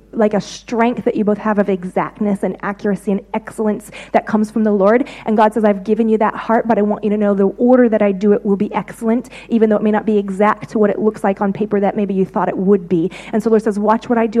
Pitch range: 205-225 Hz